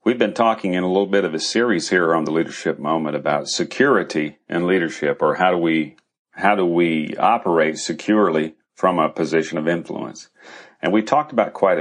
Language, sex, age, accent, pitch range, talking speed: English, male, 40-59, American, 80-110 Hz, 195 wpm